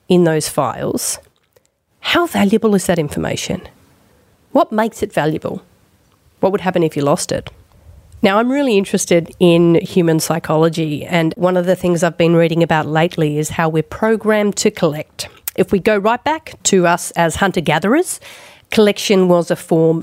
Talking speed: 165 wpm